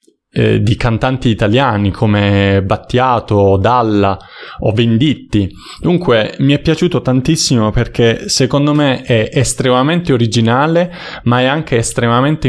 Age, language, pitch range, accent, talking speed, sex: 20-39, Italian, 105-130 Hz, native, 115 wpm, male